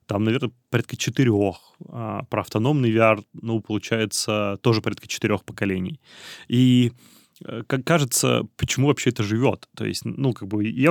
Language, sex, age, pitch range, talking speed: Russian, male, 20-39, 105-135 Hz, 150 wpm